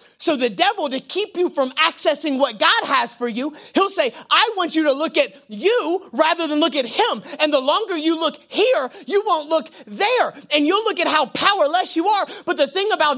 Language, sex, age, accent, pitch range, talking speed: English, male, 30-49, American, 255-370 Hz, 225 wpm